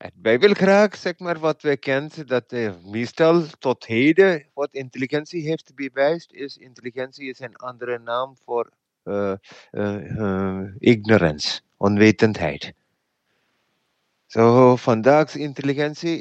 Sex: male